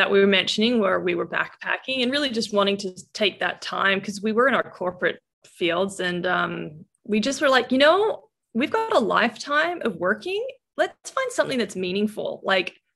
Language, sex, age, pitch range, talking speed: English, female, 20-39, 180-245 Hz, 200 wpm